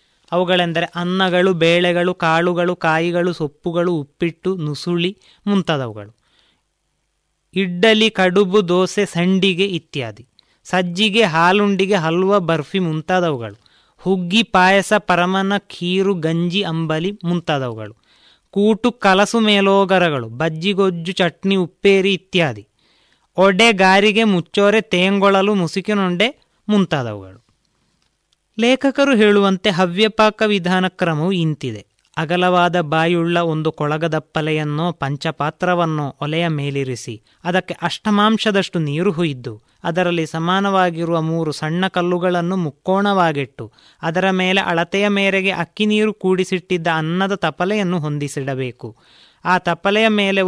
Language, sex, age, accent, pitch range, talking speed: Kannada, male, 20-39, native, 160-195 Hz, 90 wpm